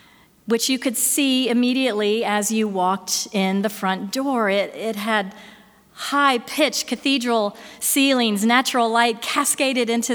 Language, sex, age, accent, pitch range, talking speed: English, female, 40-59, American, 210-255 Hz, 130 wpm